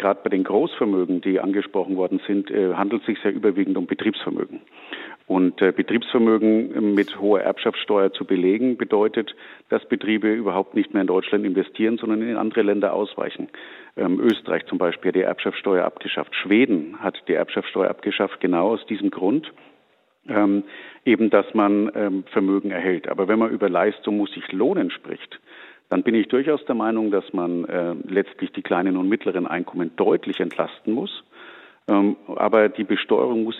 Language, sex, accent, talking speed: German, male, German, 165 wpm